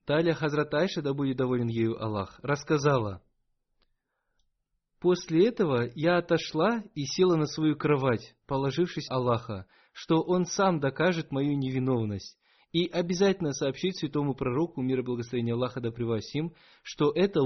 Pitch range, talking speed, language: 130-165 Hz, 130 wpm, Russian